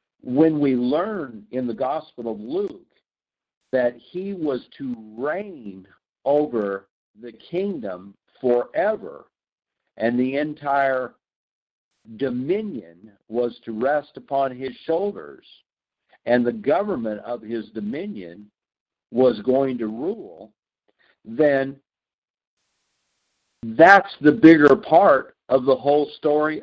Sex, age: male, 50-69